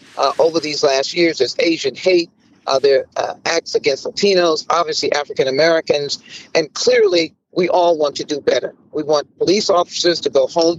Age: 50-69